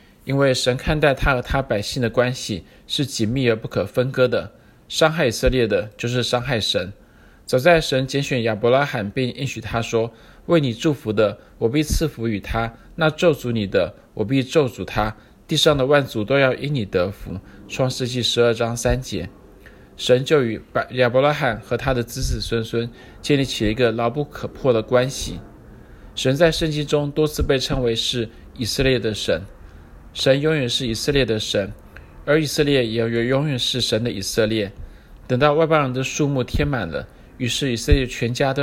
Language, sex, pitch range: Chinese, male, 110-135 Hz